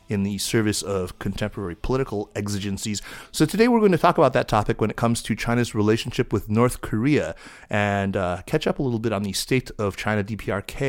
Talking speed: 210 wpm